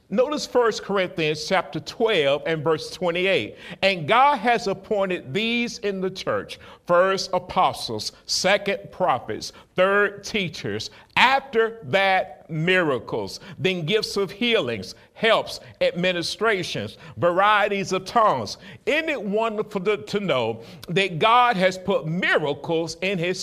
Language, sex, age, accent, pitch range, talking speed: English, male, 50-69, American, 175-220 Hz, 120 wpm